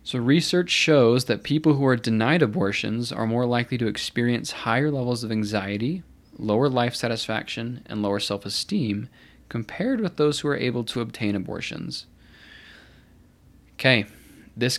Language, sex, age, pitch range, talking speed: English, male, 20-39, 105-125 Hz, 140 wpm